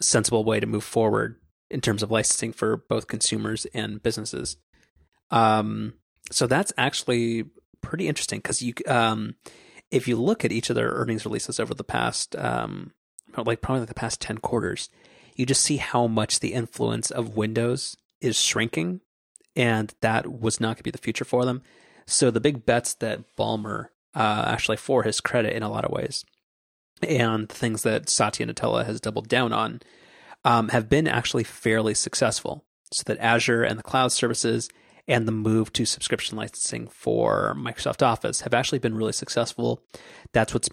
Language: English